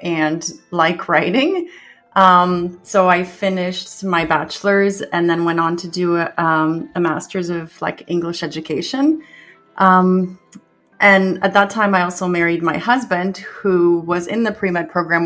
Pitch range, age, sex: 175-220 Hz, 30-49, female